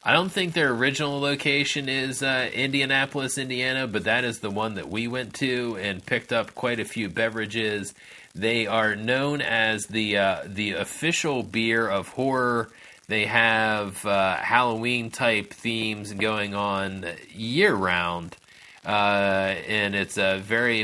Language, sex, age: English, male, 30-49